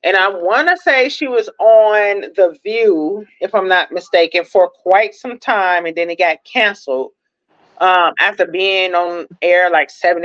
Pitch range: 170-240 Hz